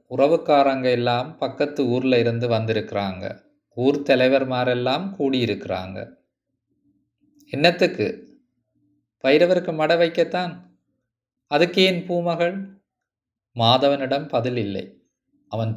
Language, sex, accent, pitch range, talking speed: Tamil, male, native, 115-145 Hz, 70 wpm